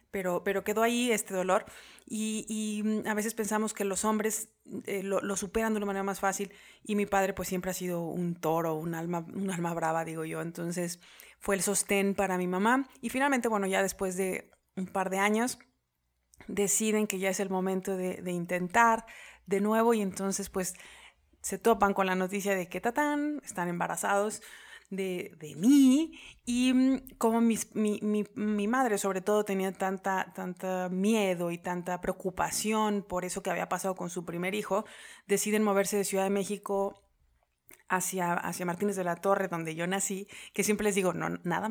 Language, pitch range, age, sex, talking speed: Spanish, 185-210 Hz, 30-49, female, 185 wpm